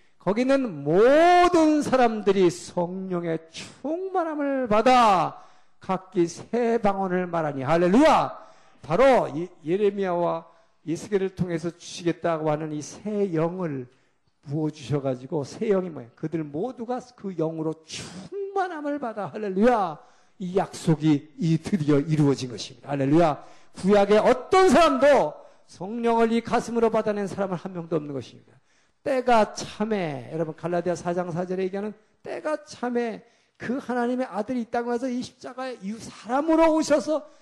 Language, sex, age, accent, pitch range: Korean, male, 50-69, native, 160-230 Hz